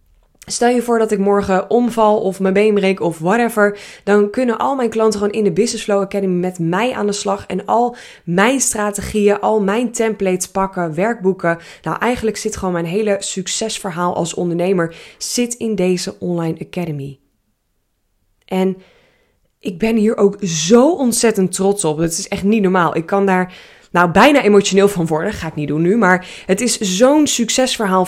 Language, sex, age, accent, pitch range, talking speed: Dutch, female, 20-39, Dutch, 180-215 Hz, 180 wpm